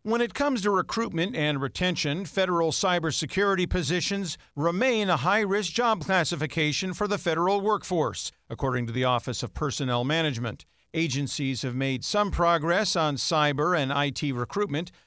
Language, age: English, 50-69